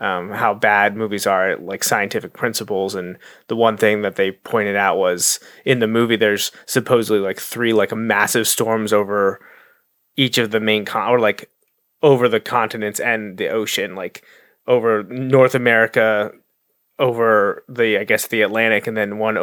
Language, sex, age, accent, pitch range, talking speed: English, male, 20-39, American, 110-130 Hz, 165 wpm